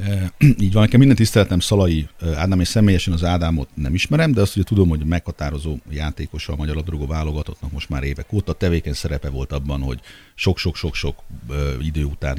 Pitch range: 80-105 Hz